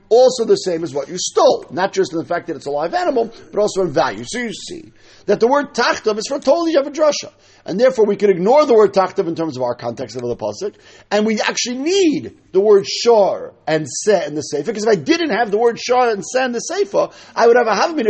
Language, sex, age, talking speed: English, male, 50-69, 260 wpm